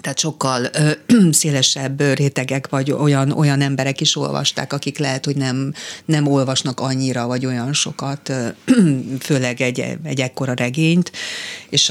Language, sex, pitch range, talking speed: Hungarian, female, 130-145 Hz, 130 wpm